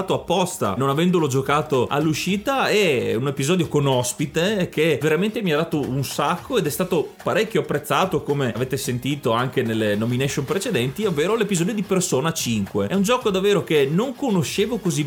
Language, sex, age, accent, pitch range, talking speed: Italian, male, 30-49, native, 135-185 Hz, 165 wpm